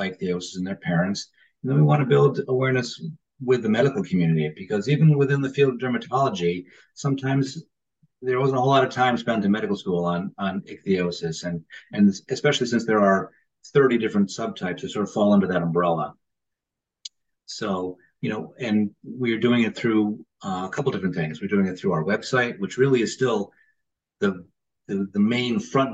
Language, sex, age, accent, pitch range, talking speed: English, male, 40-59, American, 95-130 Hz, 185 wpm